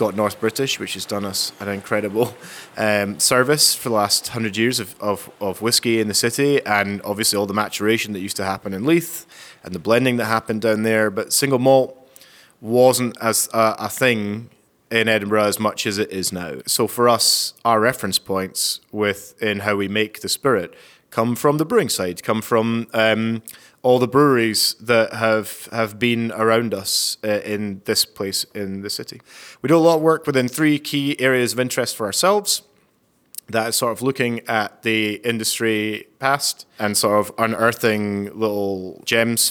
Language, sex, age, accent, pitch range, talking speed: English, male, 20-39, British, 105-120 Hz, 180 wpm